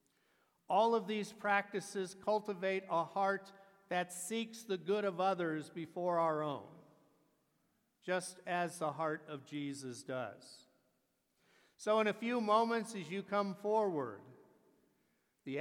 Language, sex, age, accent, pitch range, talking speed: English, male, 50-69, American, 180-210 Hz, 125 wpm